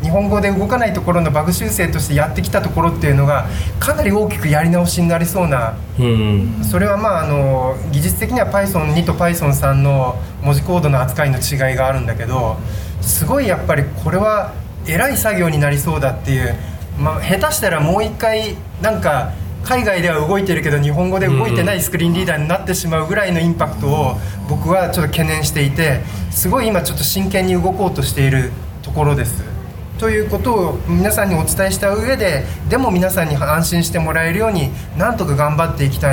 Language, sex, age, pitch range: Japanese, male, 20-39, 100-170 Hz